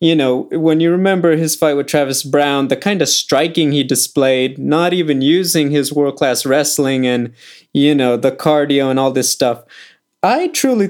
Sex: male